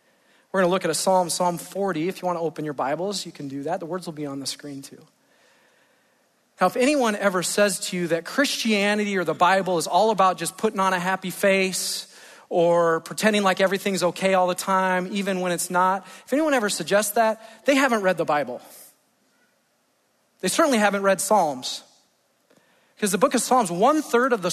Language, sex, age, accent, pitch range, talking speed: English, male, 40-59, American, 180-220 Hz, 210 wpm